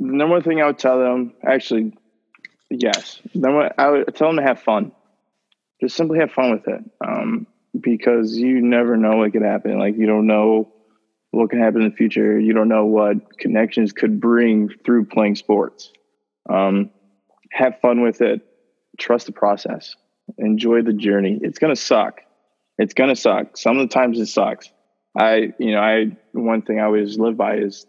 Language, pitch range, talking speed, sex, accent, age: English, 110-125 Hz, 185 wpm, male, American, 20-39